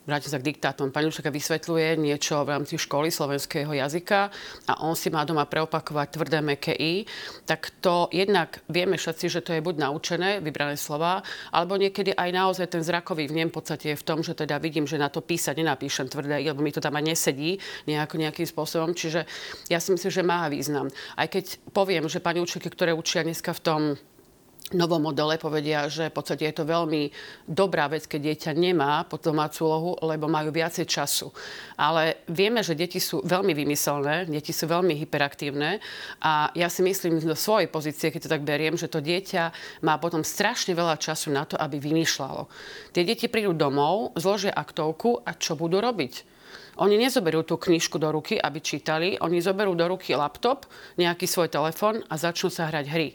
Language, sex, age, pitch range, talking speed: Slovak, female, 40-59, 150-175 Hz, 185 wpm